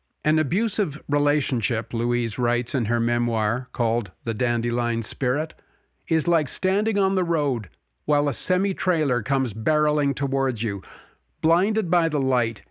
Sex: male